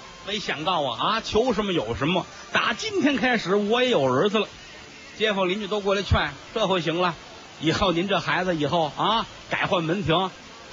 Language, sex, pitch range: Chinese, male, 165-230 Hz